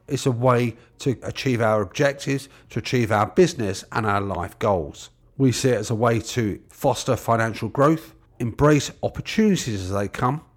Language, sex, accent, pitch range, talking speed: English, male, British, 110-140 Hz, 170 wpm